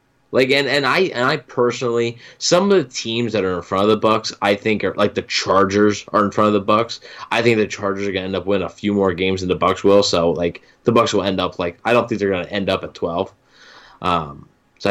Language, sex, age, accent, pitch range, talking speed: English, male, 10-29, American, 95-120 Hz, 265 wpm